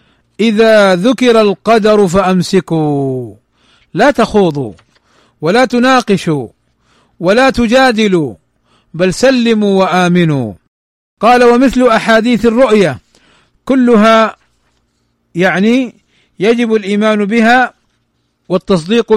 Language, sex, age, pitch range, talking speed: Arabic, male, 50-69, 180-230 Hz, 70 wpm